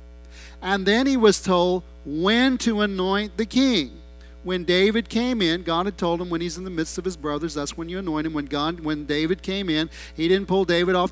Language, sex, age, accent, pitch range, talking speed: English, male, 40-59, American, 145-180 Hz, 220 wpm